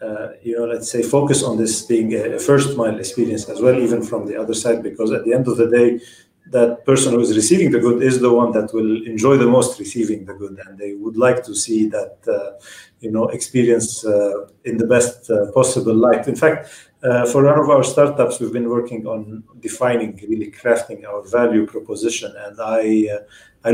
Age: 40-59